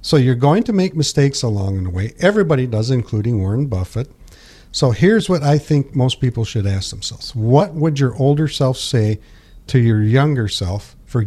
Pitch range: 110-140 Hz